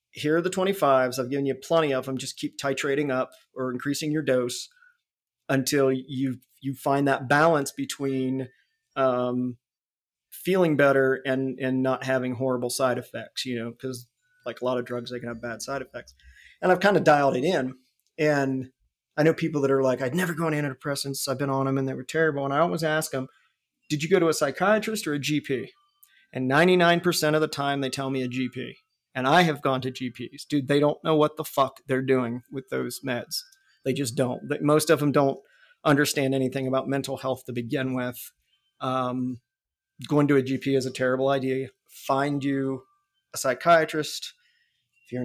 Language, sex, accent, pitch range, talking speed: English, male, American, 130-160 Hz, 195 wpm